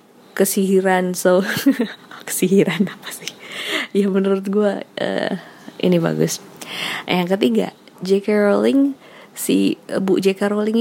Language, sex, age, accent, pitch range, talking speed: Indonesian, female, 20-39, native, 175-210 Hz, 105 wpm